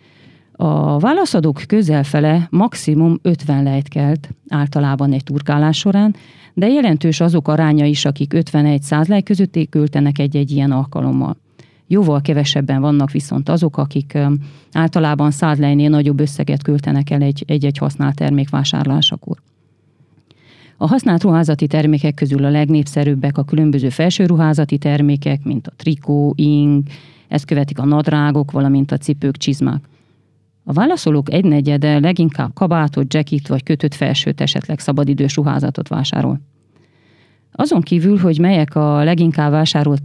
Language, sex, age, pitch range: Hungarian, female, 40-59, 145-160 Hz